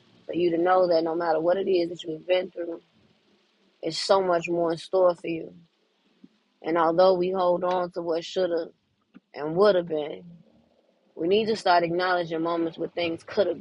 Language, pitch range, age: English, 165-185 Hz, 20-39